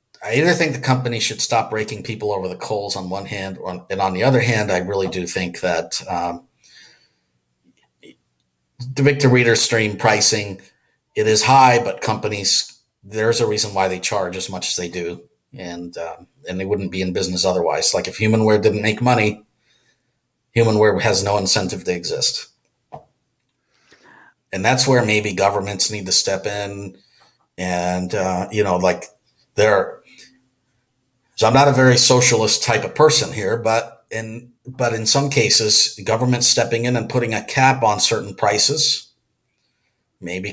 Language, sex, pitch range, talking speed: English, male, 100-125 Hz, 165 wpm